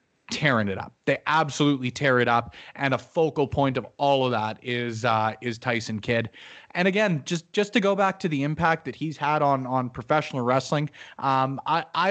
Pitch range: 125-155 Hz